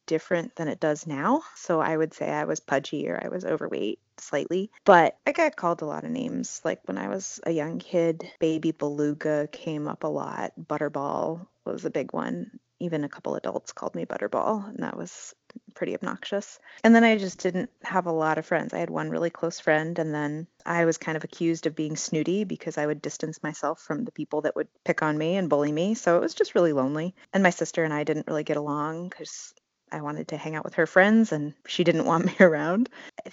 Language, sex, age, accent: English, female, 30-49, American